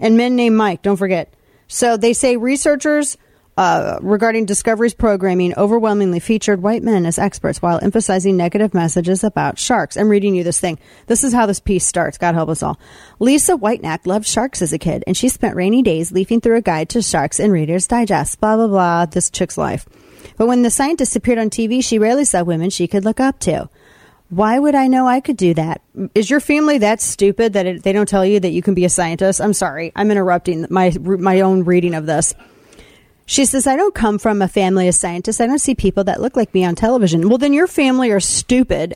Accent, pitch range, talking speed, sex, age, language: American, 190-260 Hz, 225 wpm, female, 30-49, English